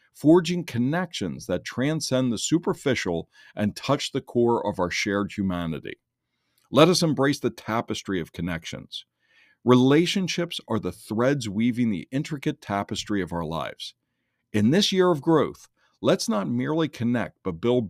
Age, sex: 50-69, male